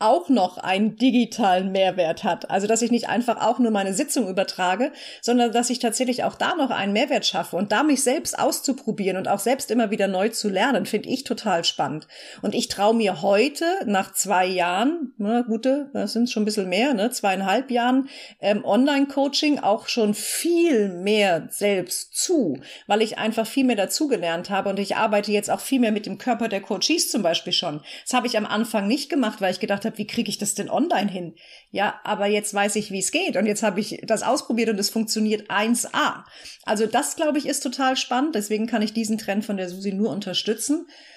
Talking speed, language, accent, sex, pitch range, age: 215 wpm, German, German, female, 200-255 Hz, 40-59